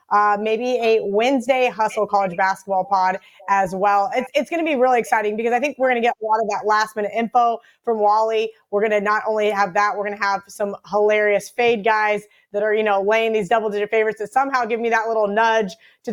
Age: 20-39